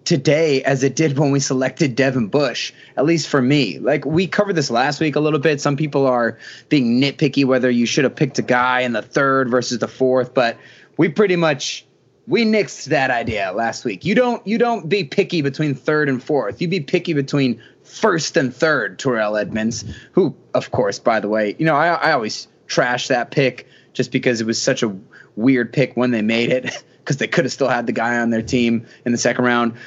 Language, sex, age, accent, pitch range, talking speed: English, male, 20-39, American, 125-155 Hz, 220 wpm